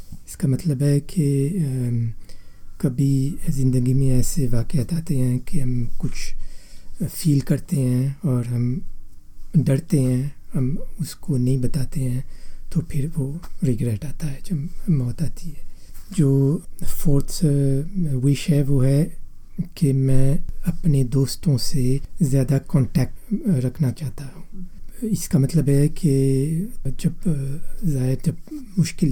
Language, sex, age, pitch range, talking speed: Hindi, male, 60-79, 125-160 Hz, 125 wpm